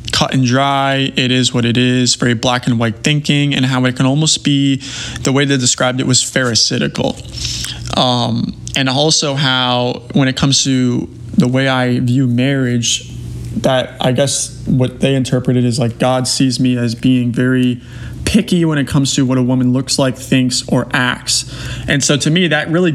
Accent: American